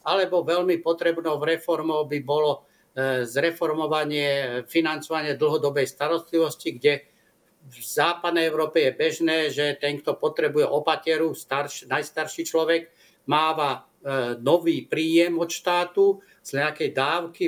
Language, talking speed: Slovak, 115 wpm